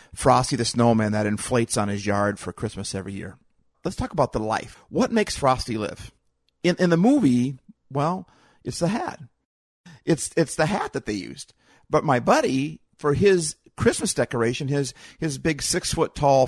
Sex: male